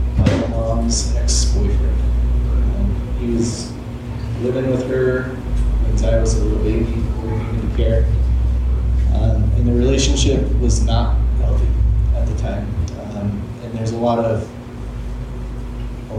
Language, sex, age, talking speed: English, male, 30-49, 120 wpm